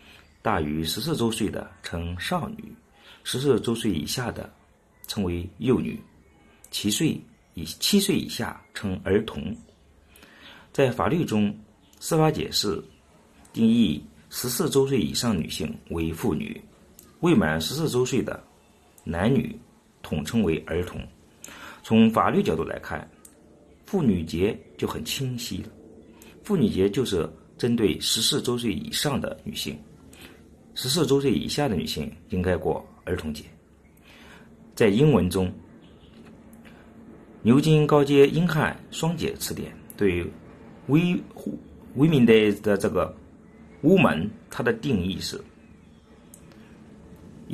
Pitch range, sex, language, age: 85-140 Hz, male, Chinese, 50-69